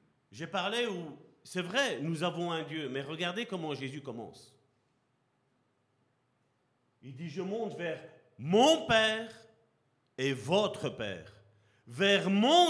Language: French